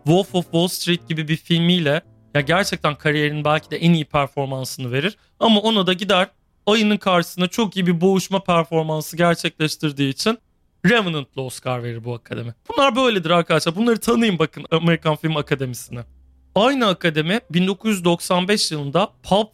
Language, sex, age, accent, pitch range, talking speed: Turkish, male, 40-59, native, 145-200 Hz, 145 wpm